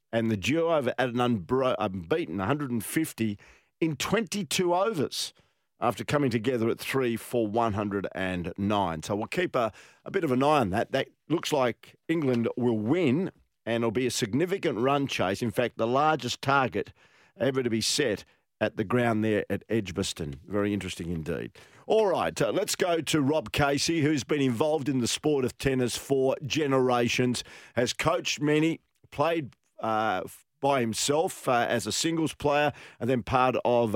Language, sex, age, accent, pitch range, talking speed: English, male, 50-69, Australian, 110-145 Hz, 170 wpm